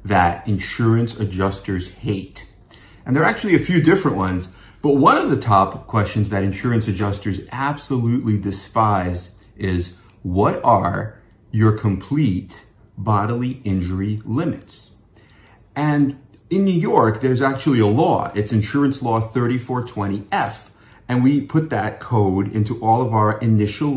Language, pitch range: English, 100-125 Hz